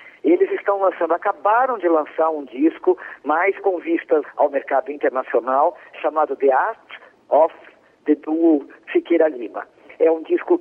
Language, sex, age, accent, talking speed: Portuguese, male, 50-69, Brazilian, 140 wpm